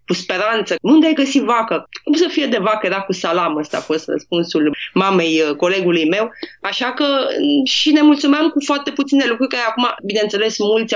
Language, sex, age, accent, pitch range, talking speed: Romanian, female, 20-39, native, 180-225 Hz, 185 wpm